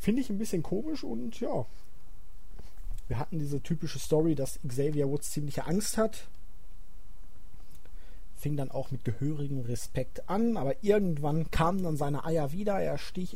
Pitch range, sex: 130-165 Hz, male